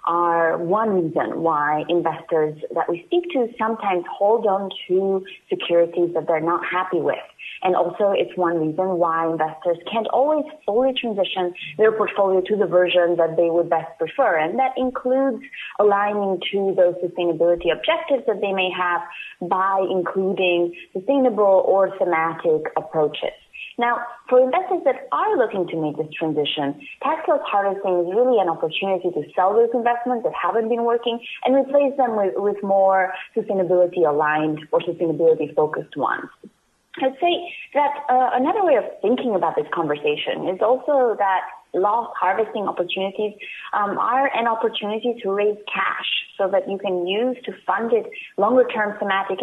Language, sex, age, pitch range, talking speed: English, female, 30-49, 180-240 Hz, 155 wpm